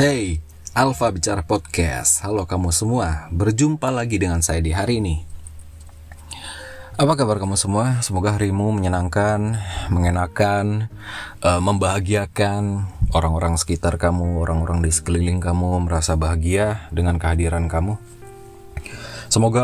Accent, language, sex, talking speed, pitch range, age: native, Indonesian, male, 115 wpm, 85-110 Hz, 20-39